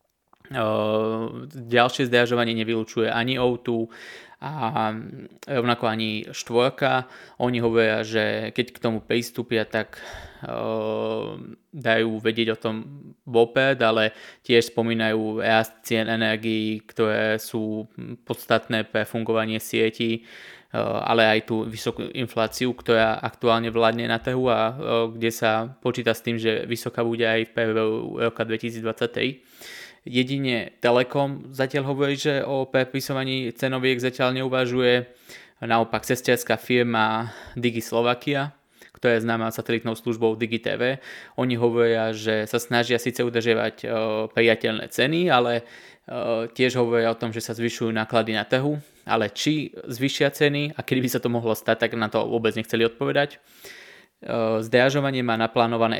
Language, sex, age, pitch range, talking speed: Slovak, male, 20-39, 110-125 Hz, 130 wpm